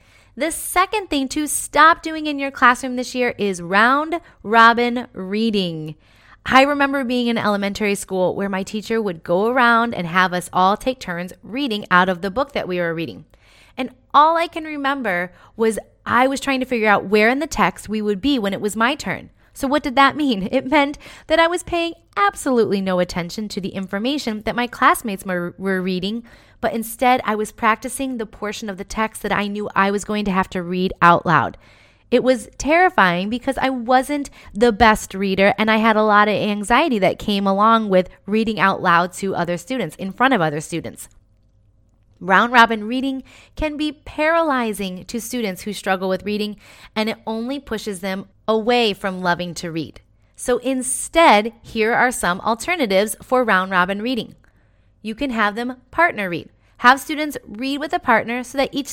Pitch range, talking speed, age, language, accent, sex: 190-260 Hz, 190 wpm, 20-39, English, American, female